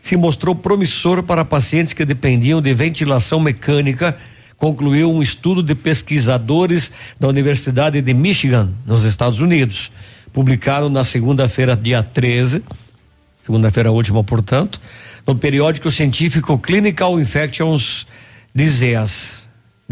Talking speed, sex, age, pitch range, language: 110 wpm, male, 60-79, 120-155 Hz, Portuguese